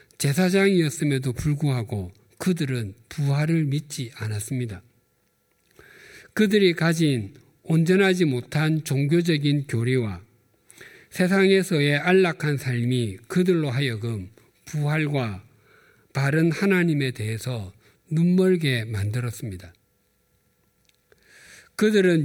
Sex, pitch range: male, 120-165 Hz